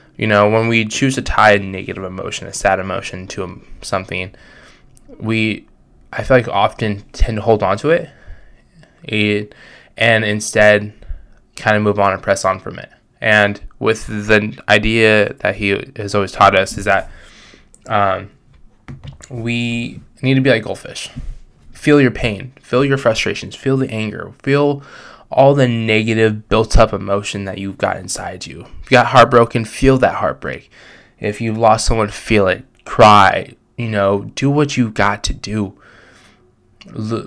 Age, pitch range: 10-29, 105-120 Hz